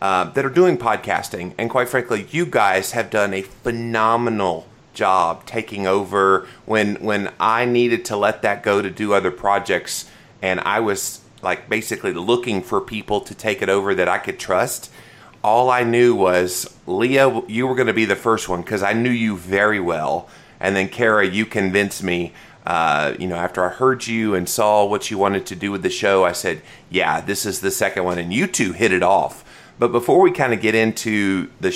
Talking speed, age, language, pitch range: 205 wpm, 30-49, English, 95-120 Hz